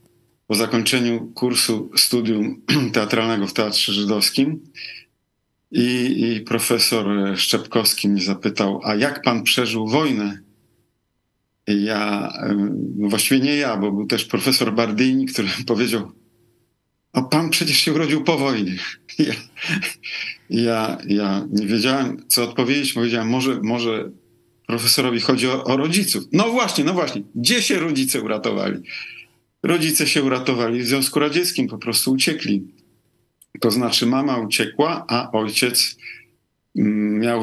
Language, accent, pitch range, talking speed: Polish, native, 105-130 Hz, 120 wpm